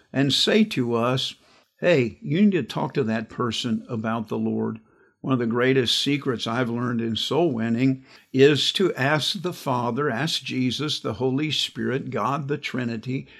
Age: 50-69